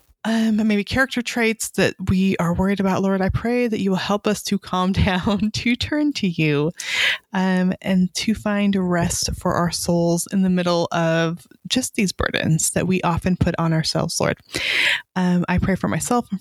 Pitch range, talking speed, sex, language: 180-220 Hz, 190 wpm, female, English